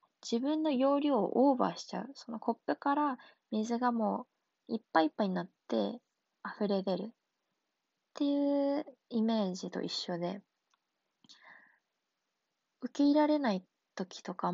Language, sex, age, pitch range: Japanese, female, 20-39, 195-275 Hz